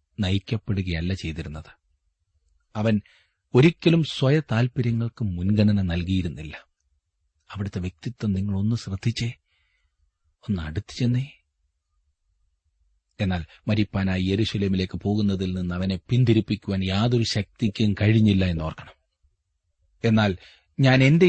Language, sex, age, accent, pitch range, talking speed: Malayalam, male, 40-59, native, 80-115 Hz, 80 wpm